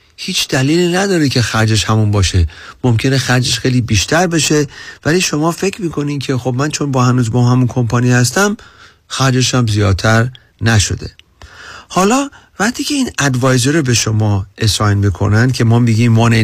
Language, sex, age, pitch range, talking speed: Persian, male, 40-59, 110-155 Hz, 160 wpm